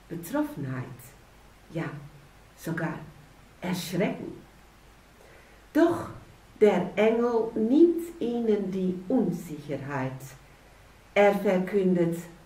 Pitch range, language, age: 155-215 Hz, German, 60-79